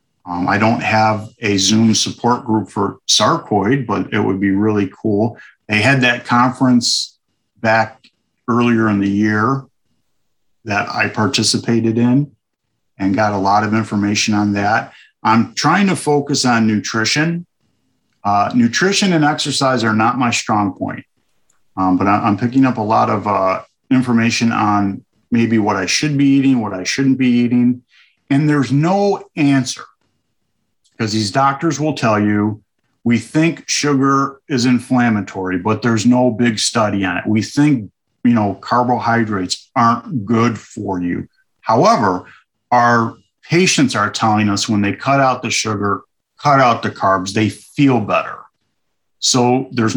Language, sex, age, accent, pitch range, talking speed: English, male, 50-69, American, 105-135 Hz, 150 wpm